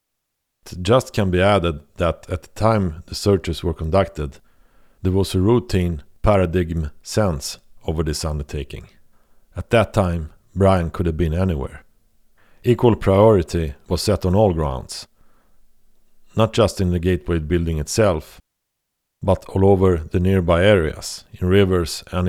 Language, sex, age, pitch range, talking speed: English, male, 50-69, 85-100 Hz, 140 wpm